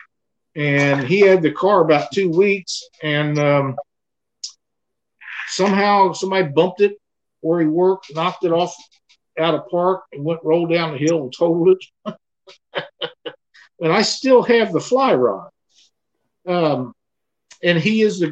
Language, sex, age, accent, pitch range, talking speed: English, male, 50-69, American, 135-175 Hz, 145 wpm